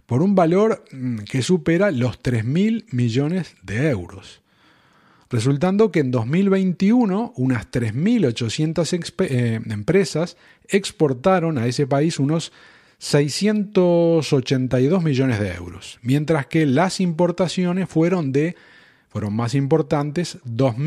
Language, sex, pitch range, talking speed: Spanish, male, 125-175 Hz, 105 wpm